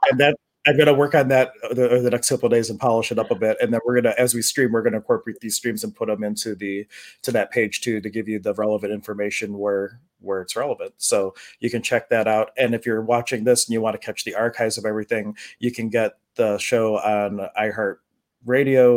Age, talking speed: 30-49, 245 wpm